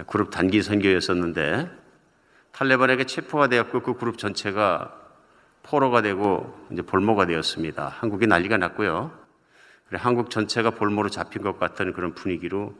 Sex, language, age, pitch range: male, Korean, 50-69, 95-125 Hz